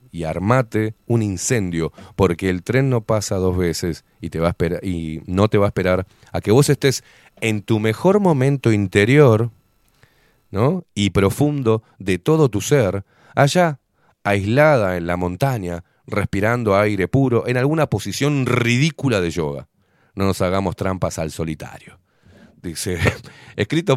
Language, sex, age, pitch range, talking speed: Spanish, male, 30-49, 95-130 Hz, 140 wpm